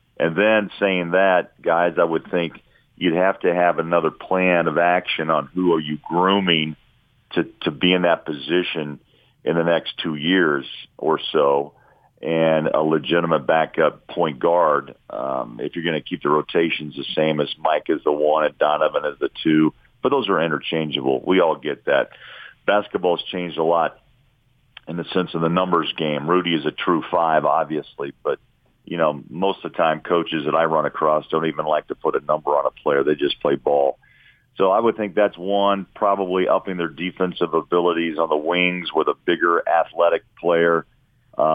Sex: male